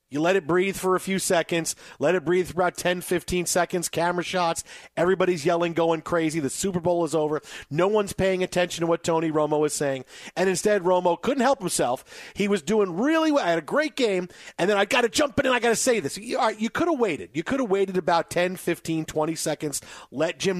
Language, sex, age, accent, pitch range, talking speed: English, male, 40-59, American, 160-200 Hz, 240 wpm